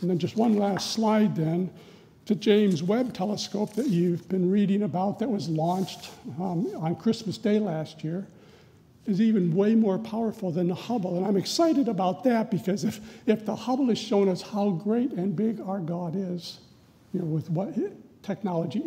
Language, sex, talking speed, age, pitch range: English, male, 190 wpm, 60-79, 180-220 Hz